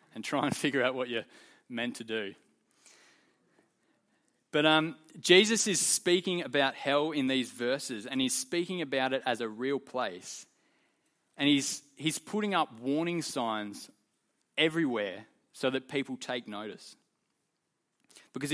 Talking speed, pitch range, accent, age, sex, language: 140 wpm, 125-160 Hz, Australian, 20-39, male, English